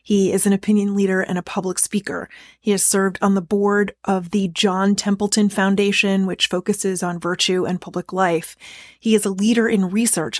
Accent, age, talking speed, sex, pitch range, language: American, 30-49, 190 wpm, female, 185-210 Hz, English